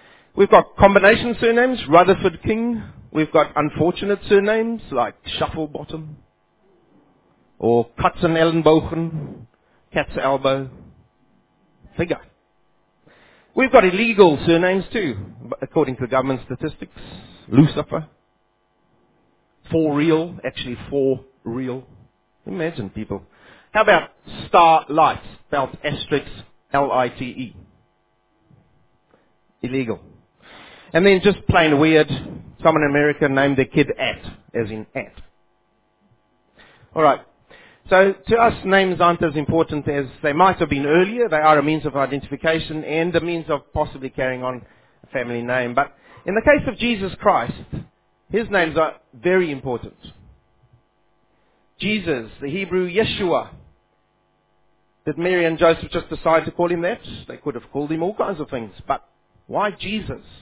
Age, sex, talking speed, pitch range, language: 40-59, male, 125 wpm, 130-175 Hz, English